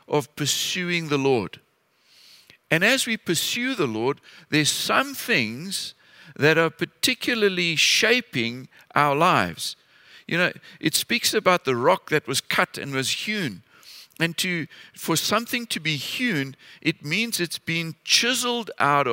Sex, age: male, 50-69